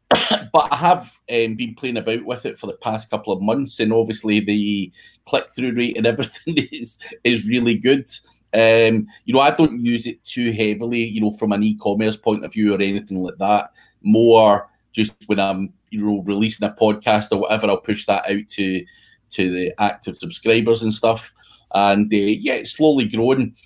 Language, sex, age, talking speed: English, male, 30-49, 190 wpm